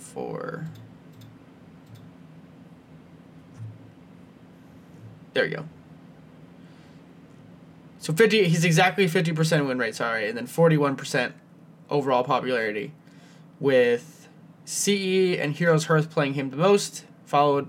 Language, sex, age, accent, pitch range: English, male, 20-39, American, 140-170 Hz